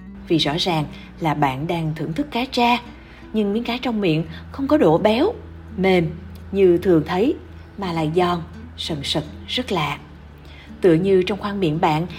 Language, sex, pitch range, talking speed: Vietnamese, female, 165-220 Hz, 175 wpm